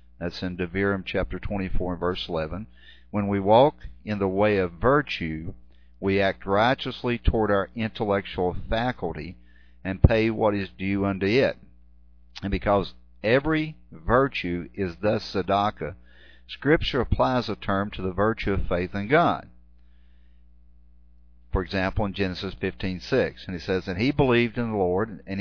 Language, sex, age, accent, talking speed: English, male, 50-69, American, 150 wpm